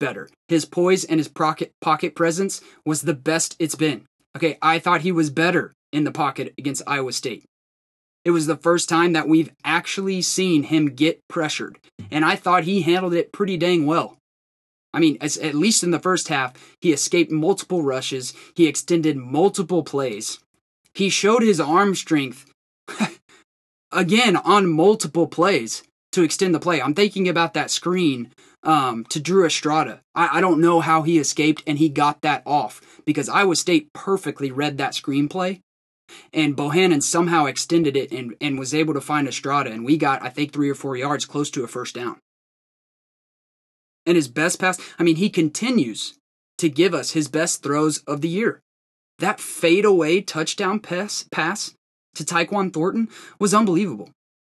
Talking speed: 175 wpm